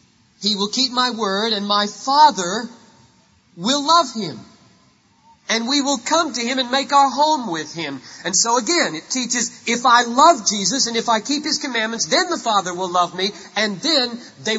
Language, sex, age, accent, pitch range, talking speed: English, male, 40-59, American, 180-240 Hz, 195 wpm